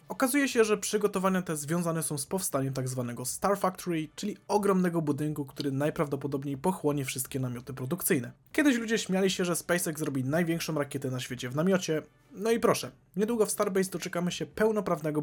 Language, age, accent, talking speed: Polish, 20-39, native, 175 wpm